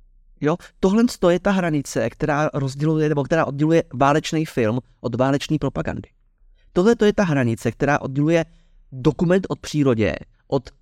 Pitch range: 130-170 Hz